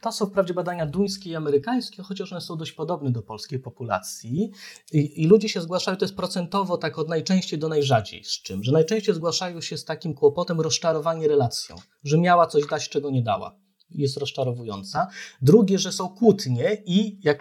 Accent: native